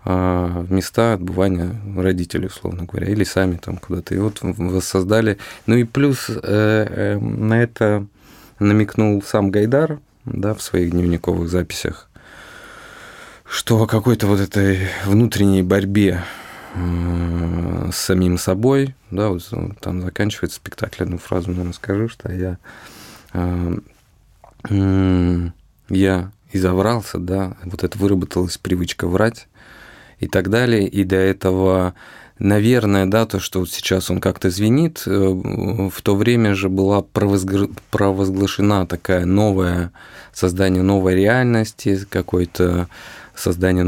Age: 20-39